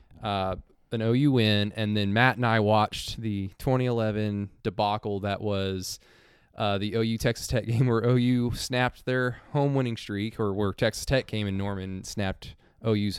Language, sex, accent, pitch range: English, male, American, 105-130 Hz